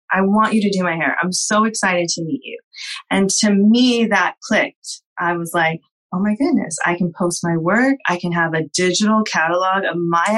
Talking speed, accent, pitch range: 215 wpm, American, 170-205 Hz